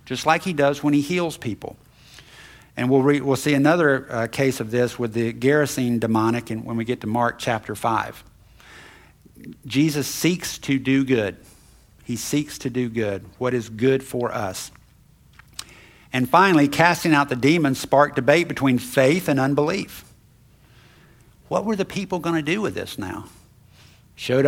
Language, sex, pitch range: English, male, 120-140 Hz